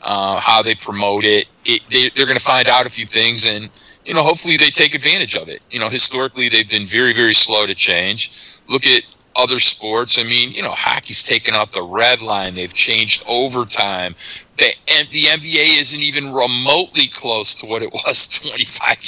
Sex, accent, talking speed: male, American, 200 wpm